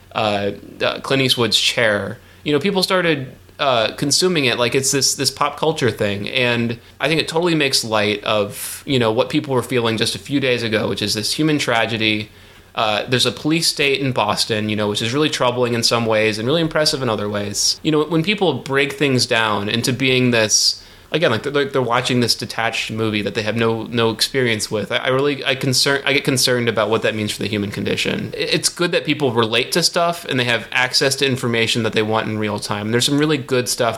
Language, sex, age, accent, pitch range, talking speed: English, male, 30-49, American, 105-135 Hz, 230 wpm